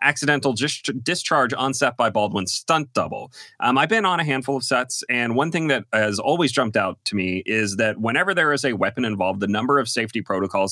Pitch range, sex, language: 105-140 Hz, male, English